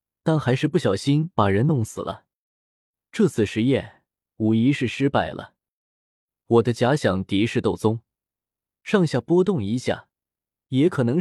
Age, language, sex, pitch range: 20-39, Chinese, male, 110-160 Hz